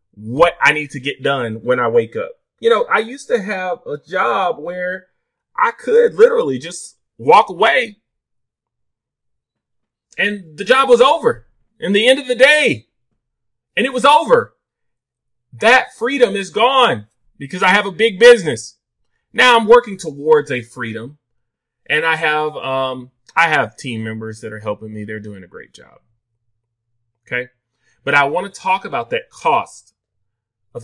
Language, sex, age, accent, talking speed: English, male, 30-49, American, 160 wpm